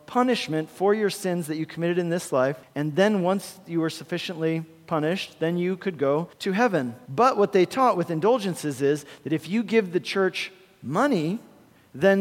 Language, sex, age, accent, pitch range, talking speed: English, male, 40-59, American, 165-220 Hz, 185 wpm